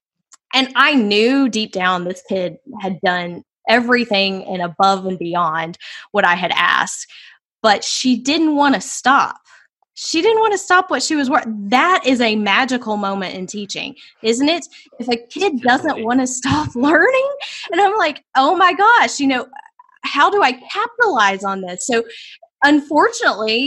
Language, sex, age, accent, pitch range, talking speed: English, female, 20-39, American, 200-285 Hz, 165 wpm